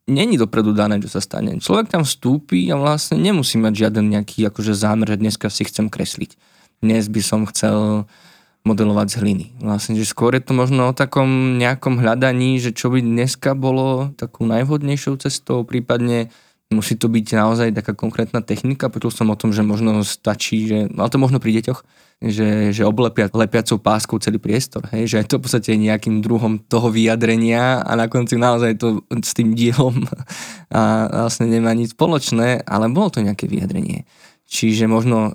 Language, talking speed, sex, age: Slovak, 180 wpm, male, 20-39